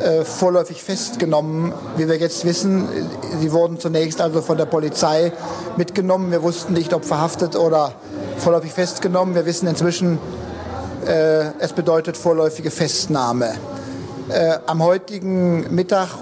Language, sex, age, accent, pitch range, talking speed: German, male, 50-69, German, 160-180 Hz, 125 wpm